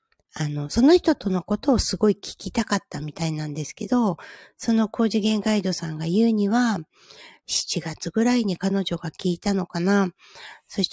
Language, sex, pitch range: Japanese, female, 170-230 Hz